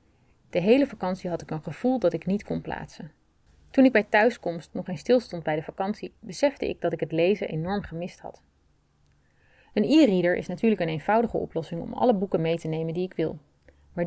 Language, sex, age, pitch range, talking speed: Dutch, female, 30-49, 160-205 Hz, 205 wpm